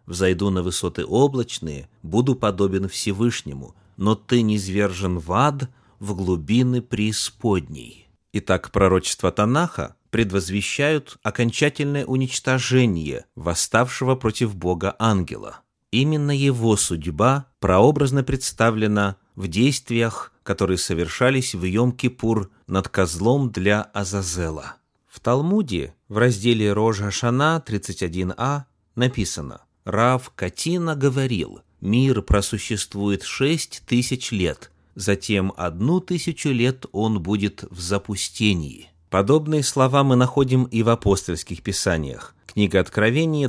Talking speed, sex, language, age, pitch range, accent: 100 wpm, male, Russian, 30-49, 95-125 Hz, native